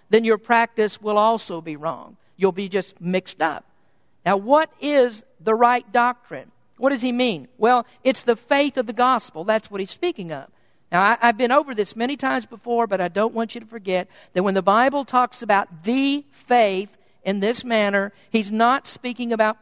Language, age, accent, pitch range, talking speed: English, 50-69, American, 210-260 Hz, 195 wpm